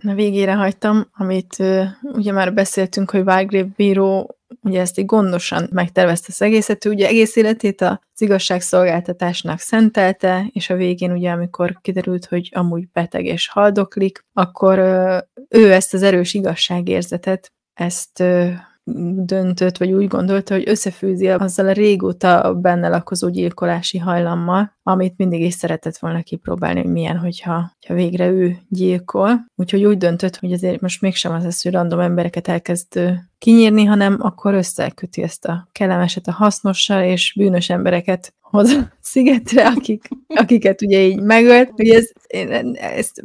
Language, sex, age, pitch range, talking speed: Hungarian, female, 20-39, 180-205 Hz, 145 wpm